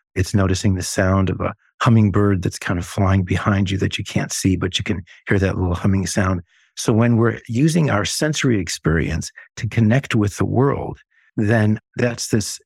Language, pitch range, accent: English, 100-115 Hz, American